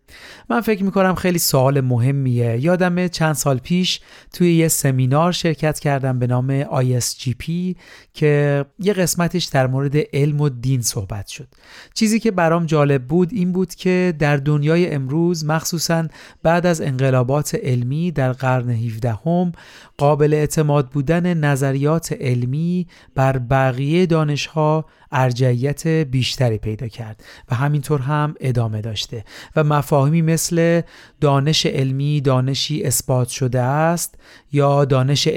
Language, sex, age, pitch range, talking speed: Persian, male, 40-59, 130-160 Hz, 125 wpm